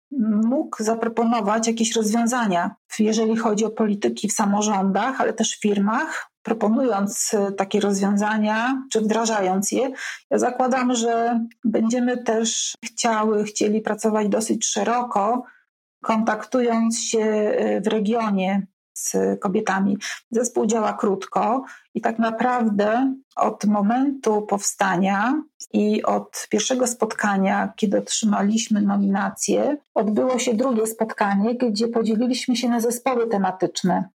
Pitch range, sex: 210-240 Hz, female